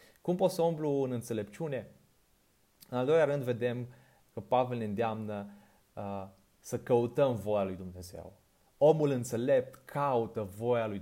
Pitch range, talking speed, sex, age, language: 115-155 Hz, 140 wpm, male, 30-49, Romanian